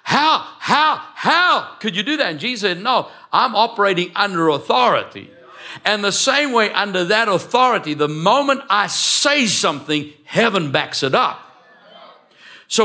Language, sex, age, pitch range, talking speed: English, male, 60-79, 175-245 Hz, 150 wpm